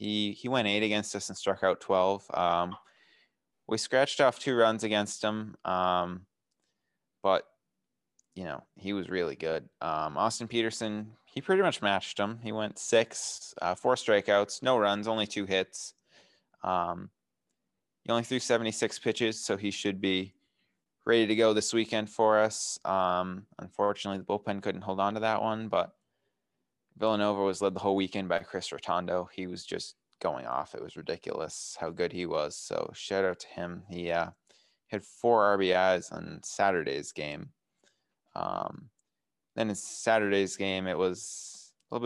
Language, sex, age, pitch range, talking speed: English, male, 20-39, 95-110 Hz, 165 wpm